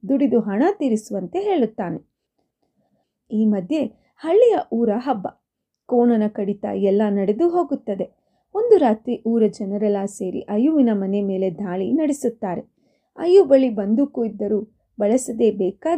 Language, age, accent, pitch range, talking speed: Kannada, 30-49, native, 205-280 Hz, 105 wpm